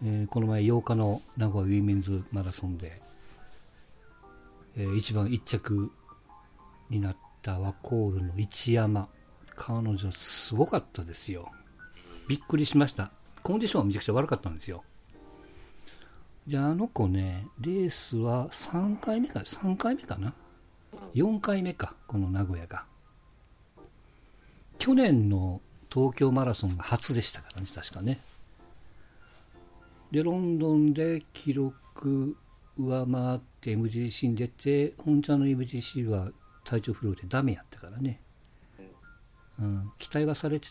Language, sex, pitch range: Japanese, male, 95-140 Hz